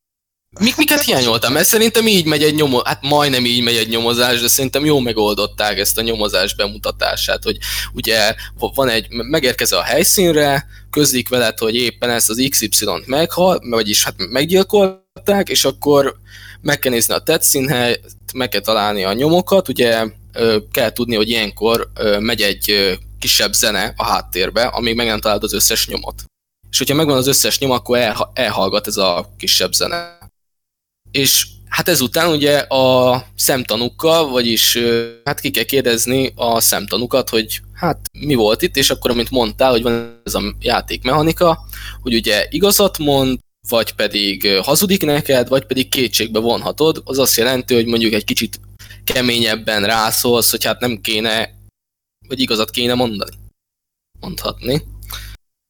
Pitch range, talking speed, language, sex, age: 105-140 Hz, 150 wpm, Hungarian, male, 20-39